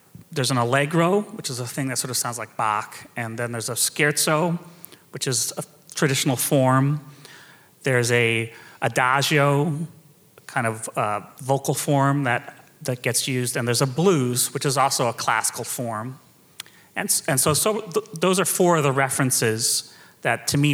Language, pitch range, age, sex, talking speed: English, 125-150 Hz, 30-49, male, 170 wpm